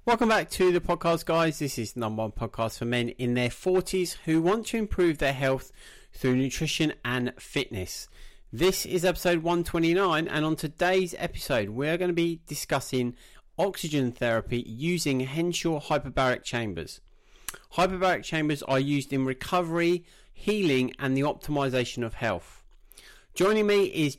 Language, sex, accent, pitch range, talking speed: English, male, British, 130-175 Hz, 155 wpm